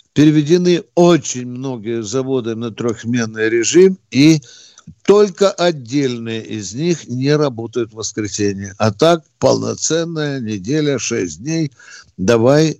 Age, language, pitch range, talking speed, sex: 60-79, Russian, 115-155 Hz, 110 wpm, male